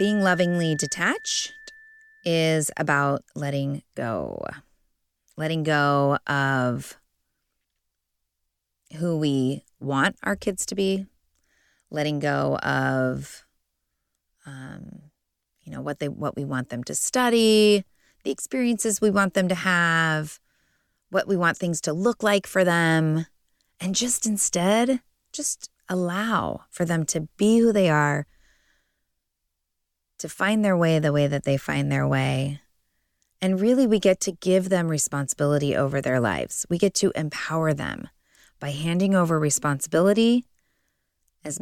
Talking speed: 130 wpm